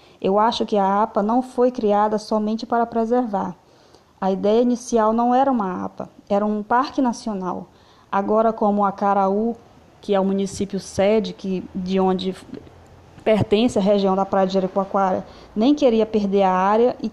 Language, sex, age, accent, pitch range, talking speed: Portuguese, female, 20-39, Brazilian, 200-255 Hz, 160 wpm